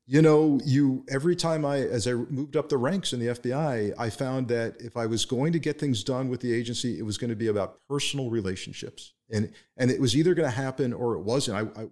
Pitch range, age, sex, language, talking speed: 115-145 Hz, 40-59, male, English, 250 wpm